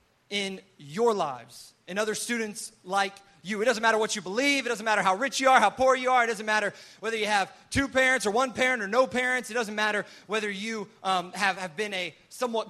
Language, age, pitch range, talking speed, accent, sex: English, 30-49, 195-230 Hz, 235 wpm, American, male